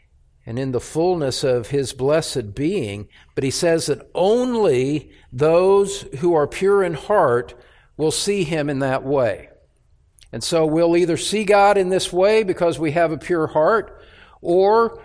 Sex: male